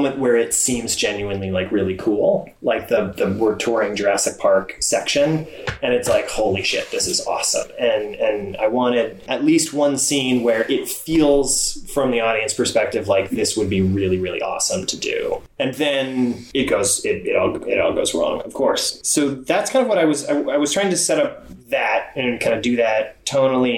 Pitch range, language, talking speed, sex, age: 115-165 Hz, English, 205 wpm, male, 20-39